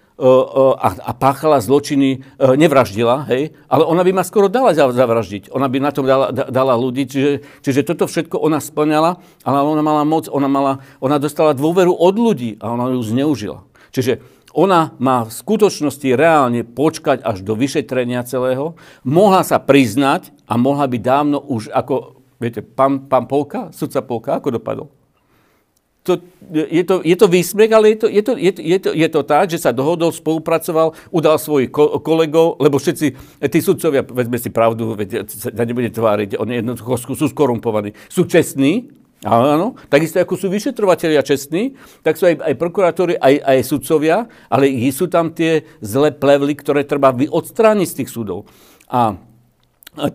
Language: Slovak